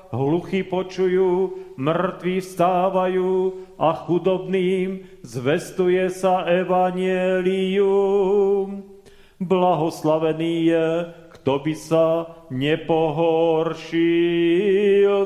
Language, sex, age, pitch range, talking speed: Slovak, male, 40-59, 165-185 Hz, 60 wpm